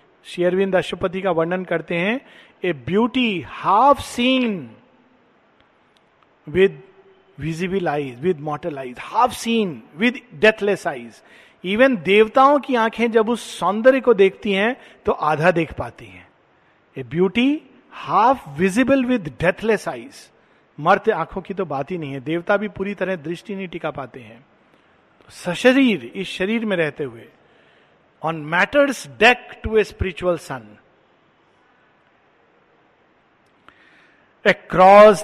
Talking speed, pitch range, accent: 120 wpm, 155-215 Hz, native